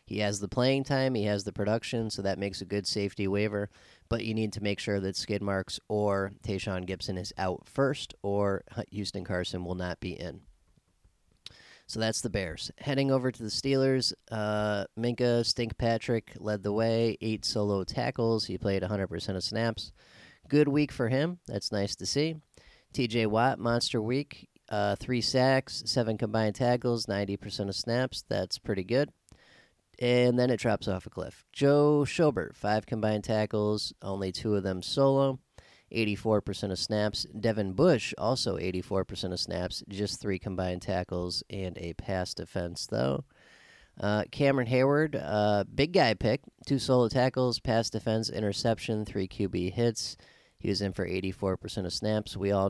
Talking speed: 165 wpm